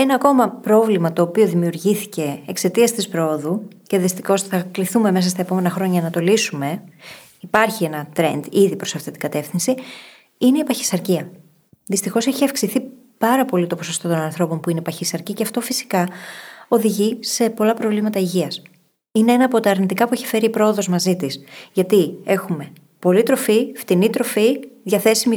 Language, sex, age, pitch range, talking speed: Greek, female, 20-39, 180-240 Hz, 165 wpm